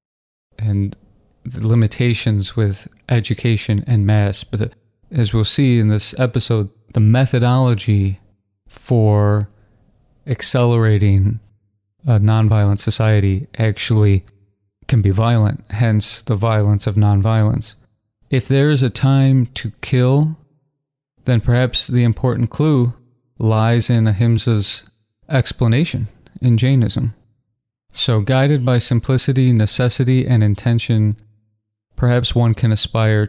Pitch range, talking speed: 105-125 Hz, 105 wpm